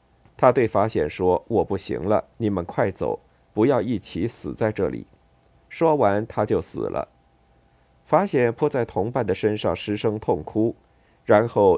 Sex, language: male, Chinese